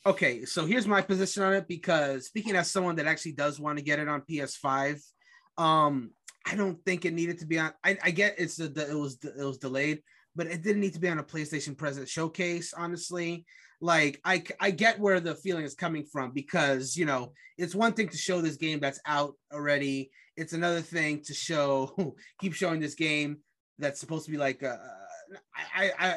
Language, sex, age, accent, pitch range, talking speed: English, male, 30-49, American, 145-190 Hz, 215 wpm